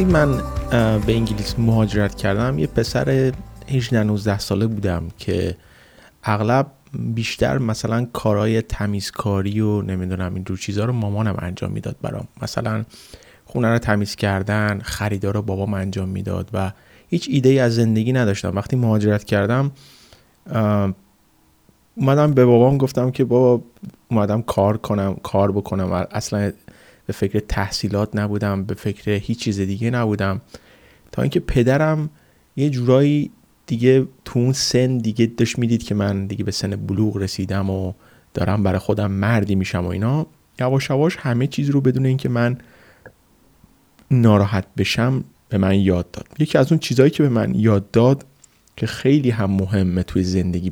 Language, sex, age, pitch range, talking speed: Persian, male, 30-49, 100-125 Hz, 150 wpm